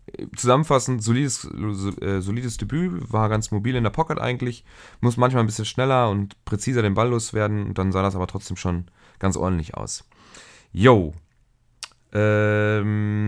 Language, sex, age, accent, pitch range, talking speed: German, male, 30-49, German, 95-115 Hz, 160 wpm